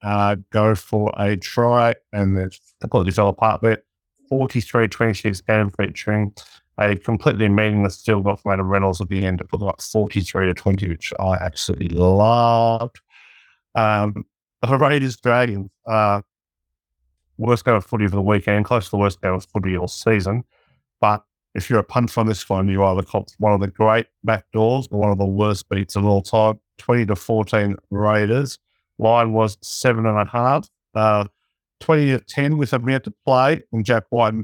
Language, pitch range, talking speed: English, 100-115 Hz, 185 wpm